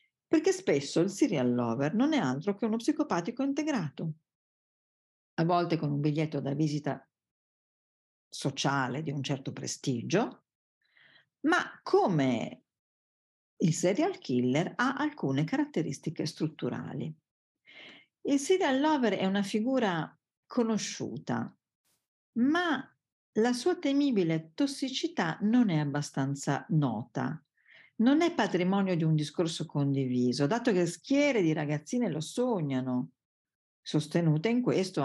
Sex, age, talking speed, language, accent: female, 50-69, 115 wpm, Italian, native